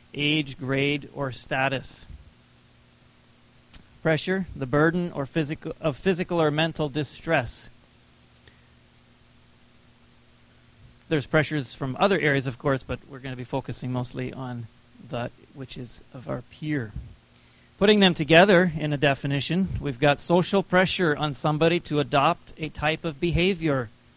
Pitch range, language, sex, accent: 125-165 Hz, English, male, American